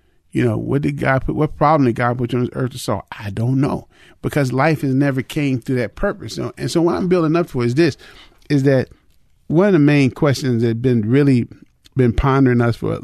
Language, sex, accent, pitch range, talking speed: English, male, American, 115-135 Hz, 240 wpm